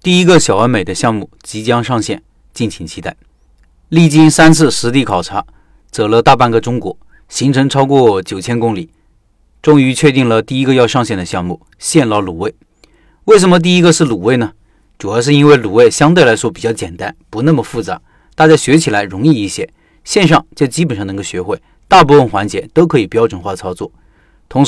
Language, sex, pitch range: Chinese, male, 110-155 Hz